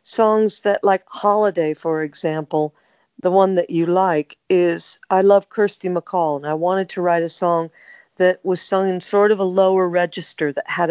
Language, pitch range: English, 165-200 Hz